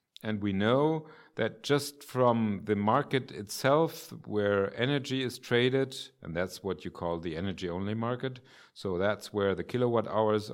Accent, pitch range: German, 95-120 Hz